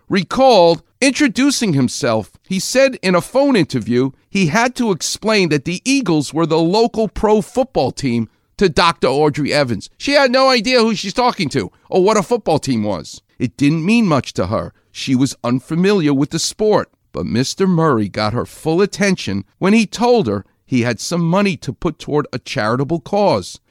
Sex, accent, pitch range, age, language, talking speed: male, American, 130-200 Hz, 50-69, English, 185 wpm